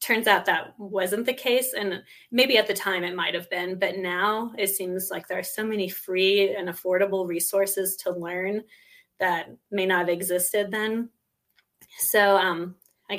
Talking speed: 180 wpm